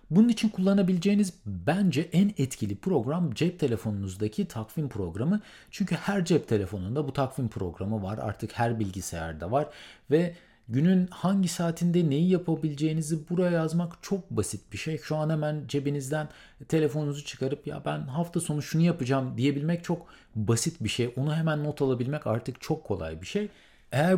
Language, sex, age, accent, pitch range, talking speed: Turkish, male, 40-59, native, 120-175 Hz, 155 wpm